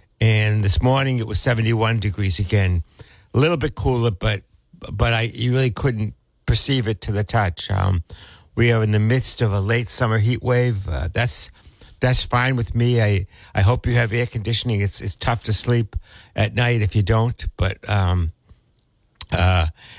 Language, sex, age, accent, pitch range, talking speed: English, male, 60-79, American, 100-120 Hz, 185 wpm